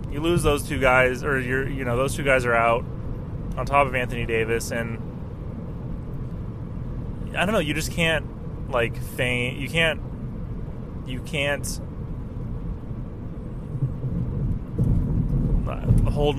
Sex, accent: male, American